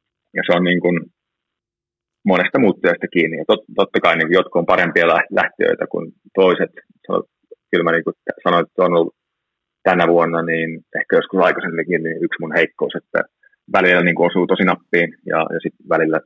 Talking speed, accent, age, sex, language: 170 wpm, native, 30-49, male, Finnish